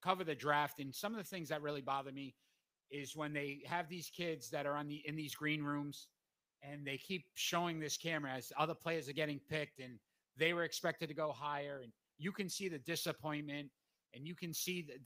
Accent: American